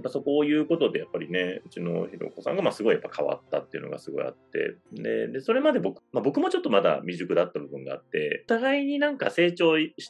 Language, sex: Japanese, male